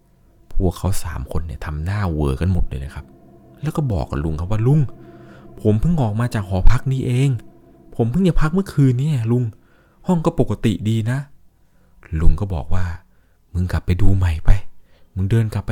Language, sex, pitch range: Thai, male, 85-130 Hz